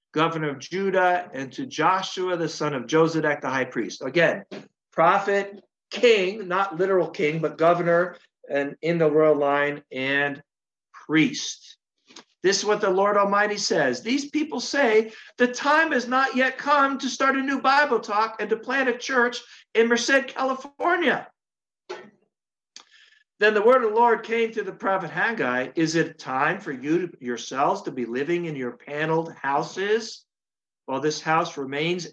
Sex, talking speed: male, 160 wpm